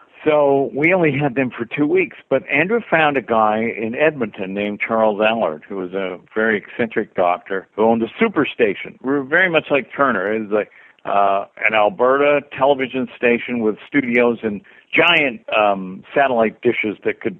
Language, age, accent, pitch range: English, 60-79, American, 100-125 Hz